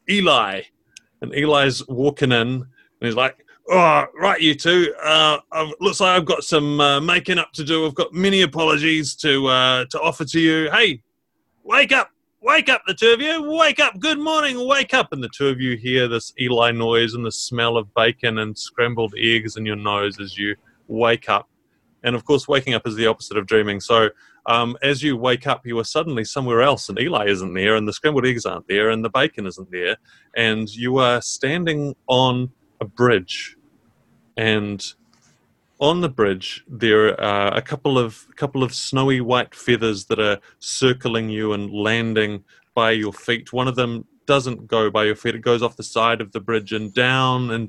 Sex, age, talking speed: male, 30-49, 200 wpm